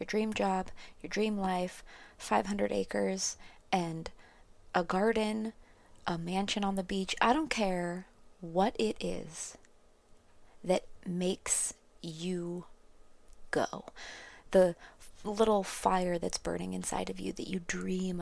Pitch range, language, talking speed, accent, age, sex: 160-200 Hz, English, 120 wpm, American, 20-39, female